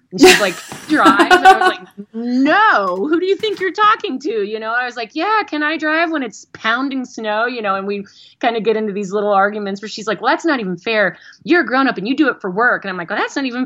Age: 30-49